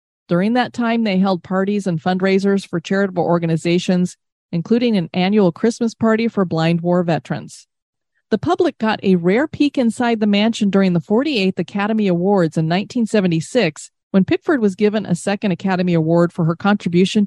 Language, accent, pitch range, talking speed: English, American, 175-210 Hz, 165 wpm